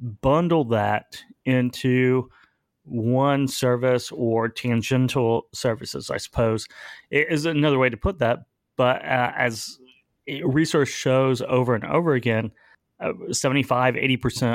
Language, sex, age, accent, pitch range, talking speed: English, male, 30-49, American, 115-135 Hz, 115 wpm